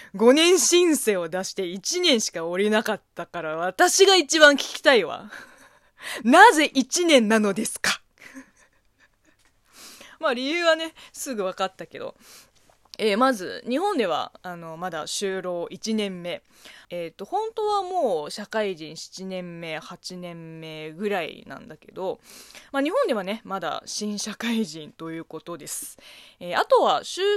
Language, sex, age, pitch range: Japanese, female, 20-39, 180-295 Hz